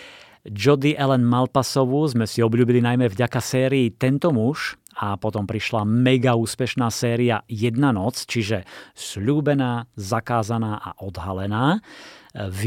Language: Slovak